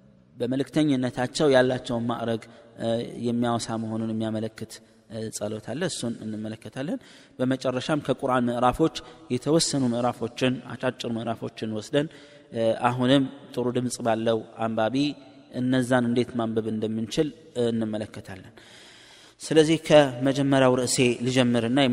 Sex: male